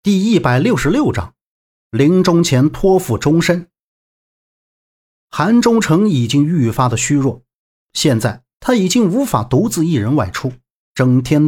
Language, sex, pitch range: Chinese, male, 125-175 Hz